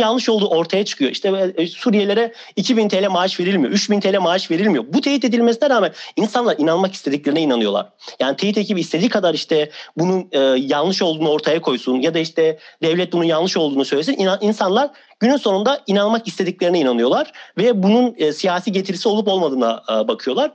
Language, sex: Turkish, male